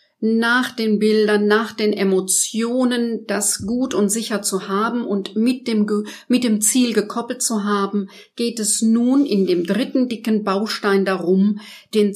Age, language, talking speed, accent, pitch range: 50-69, German, 150 wpm, German, 190-225 Hz